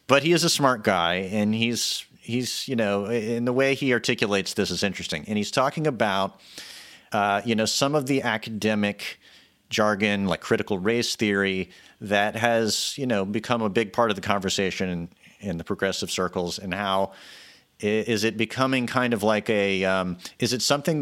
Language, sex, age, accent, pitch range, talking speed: English, male, 40-59, American, 100-140 Hz, 185 wpm